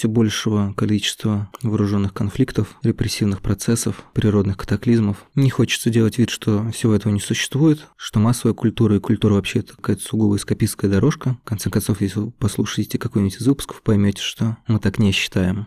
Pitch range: 100-115 Hz